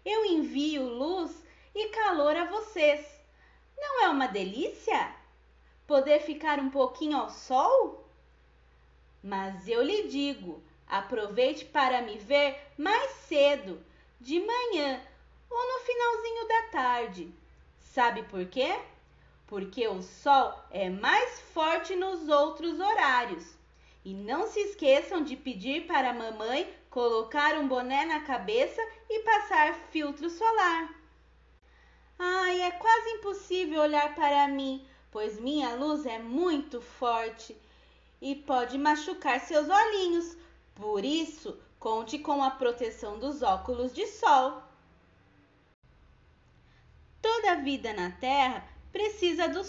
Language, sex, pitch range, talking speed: Portuguese, female, 250-360 Hz, 120 wpm